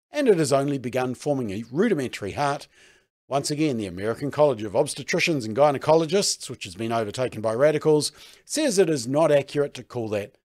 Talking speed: 185 wpm